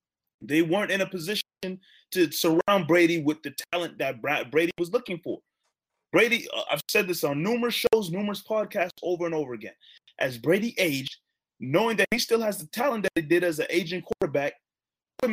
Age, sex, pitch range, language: 20-39, male, 155-200 Hz, English